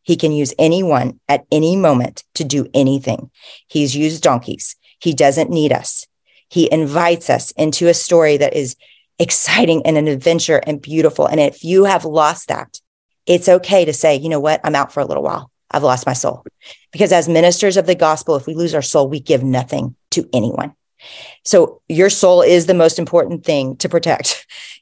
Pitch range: 150-180 Hz